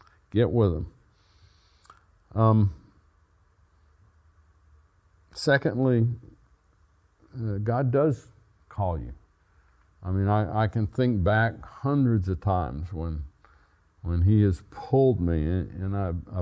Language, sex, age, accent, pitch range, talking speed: English, male, 60-79, American, 90-130 Hz, 105 wpm